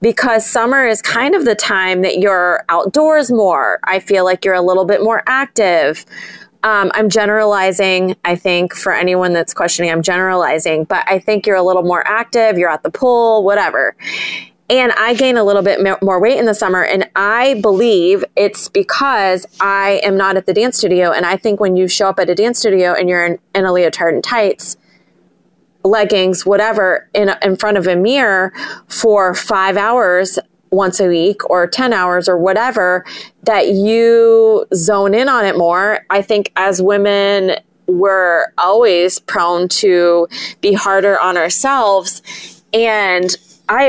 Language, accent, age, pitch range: English, American, 20-39, 185-220 Hz